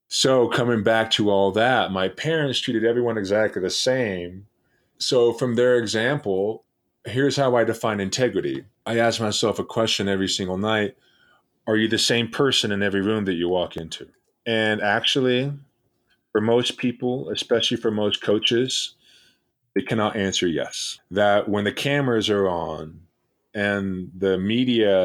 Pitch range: 100-125 Hz